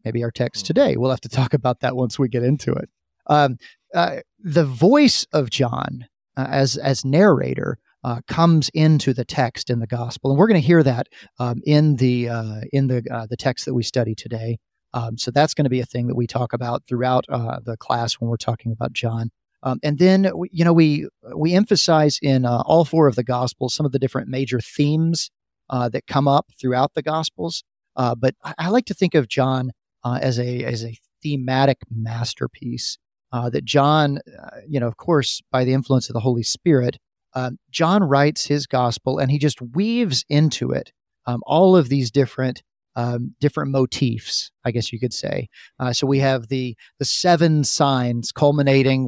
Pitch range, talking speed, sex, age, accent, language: 120-145 Hz, 200 wpm, male, 40-59, American, English